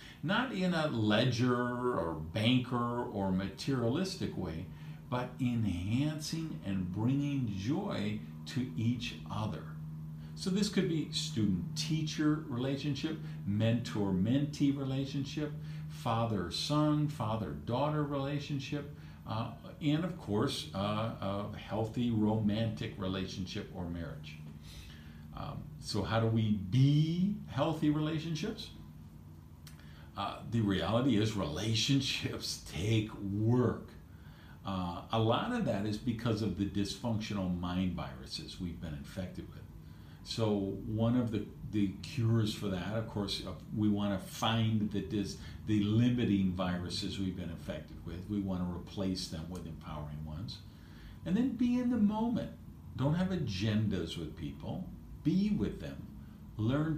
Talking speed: 125 wpm